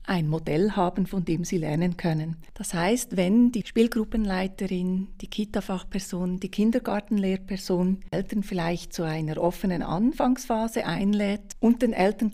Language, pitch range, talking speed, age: German, 170-210 Hz, 135 wpm, 30-49